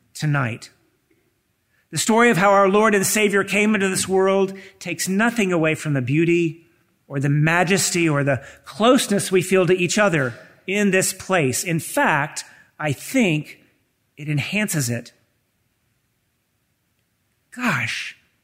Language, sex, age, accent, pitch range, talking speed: English, male, 50-69, American, 150-215 Hz, 135 wpm